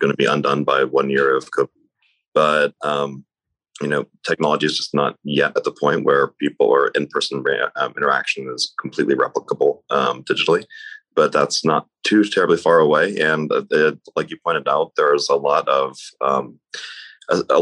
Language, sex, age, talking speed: English, male, 30-49, 175 wpm